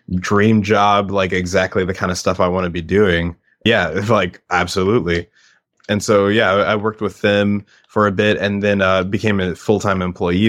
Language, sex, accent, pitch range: English, male, American, 85-100 Hz